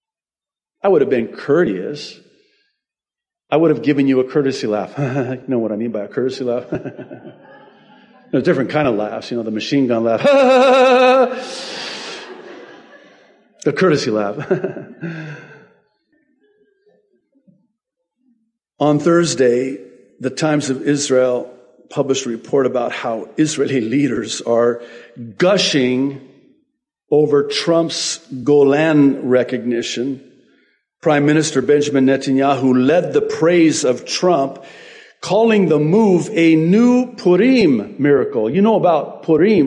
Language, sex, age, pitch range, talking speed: English, male, 50-69, 135-215 Hz, 115 wpm